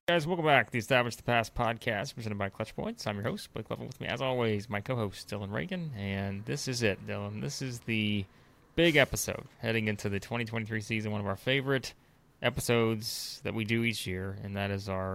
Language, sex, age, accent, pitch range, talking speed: English, male, 30-49, American, 100-130 Hz, 220 wpm